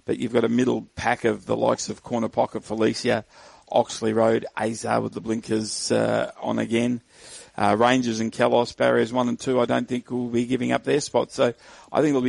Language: English